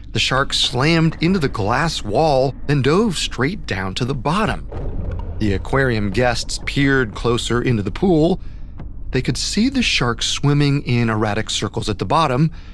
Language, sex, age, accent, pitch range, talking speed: English, male, 30-49, American, 100-135 Hz, 160 wpm